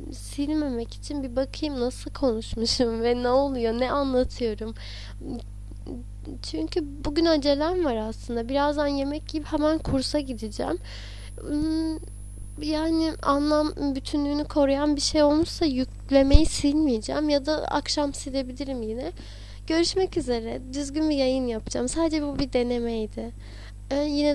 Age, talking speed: 10-29, 120 wpm